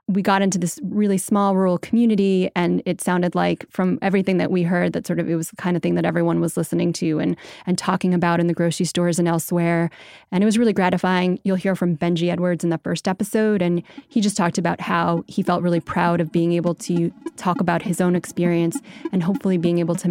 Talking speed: 235 wpm